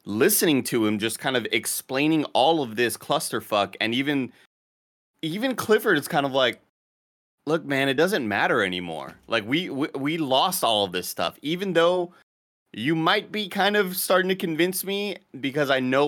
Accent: American